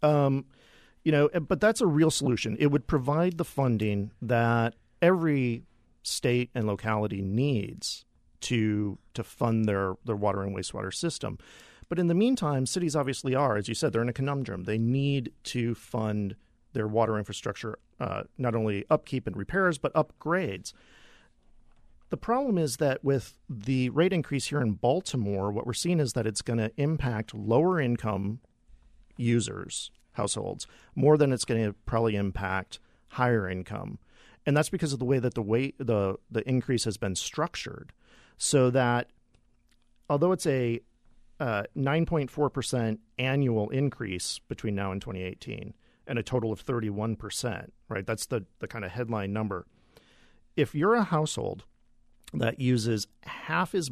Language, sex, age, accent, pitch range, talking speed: English, male, 40-59, American, 105-140 Hz, 155 wpm